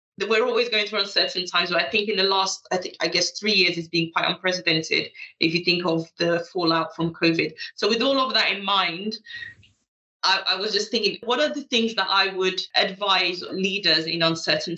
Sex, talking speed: female, 215 wpm